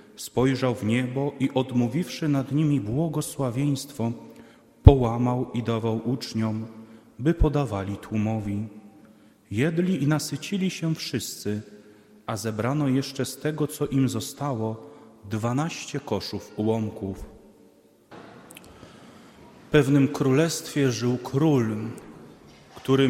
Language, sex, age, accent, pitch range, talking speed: Polish, male, 30-49, native, 110-150 Hz, 95 wpm